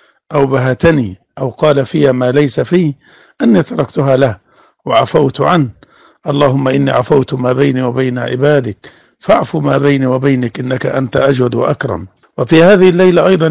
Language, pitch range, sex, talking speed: Arabic, 130-150 Hz, male, 140 wpm